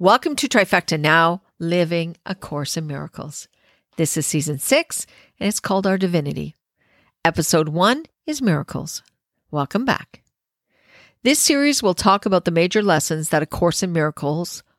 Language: English